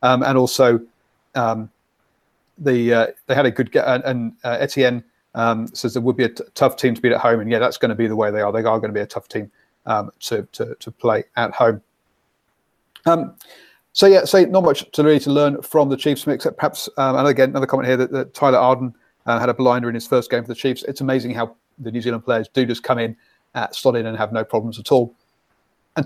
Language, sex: English, male